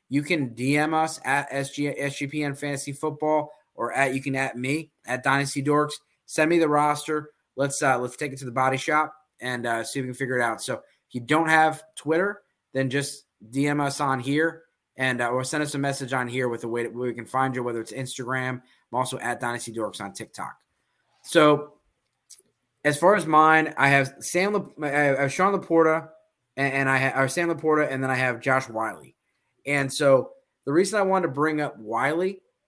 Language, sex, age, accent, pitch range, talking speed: English, male, 20-39, American, 130-150 Hz, 210 wpm